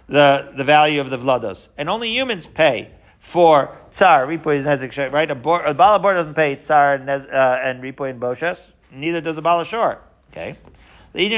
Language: English